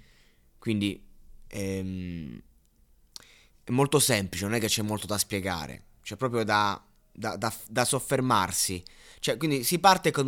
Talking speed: 125 wpm